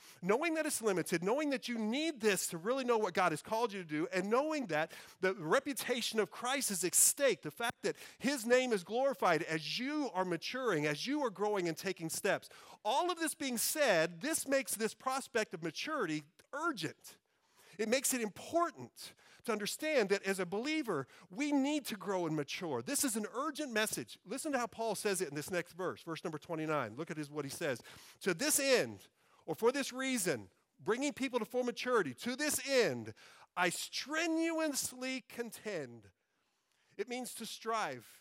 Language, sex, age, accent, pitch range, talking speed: English, male, 40-59, American, 180-260 Hz, 190 wpm